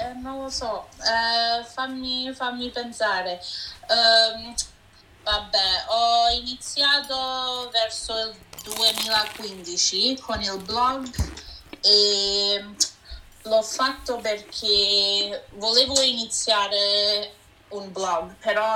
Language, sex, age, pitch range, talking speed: Italian, female, 20-39, 185-230 Hz, 80 wpm